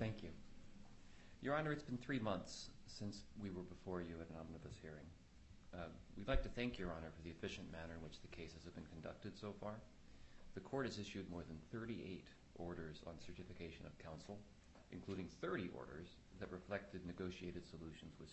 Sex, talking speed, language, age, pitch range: male, 185 wpm, English, 40-59, 80-100 Hz